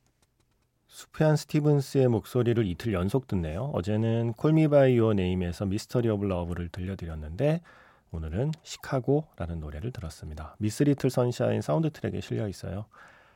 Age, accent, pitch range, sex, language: 40-59, native, 95-135 Hz, male, Korean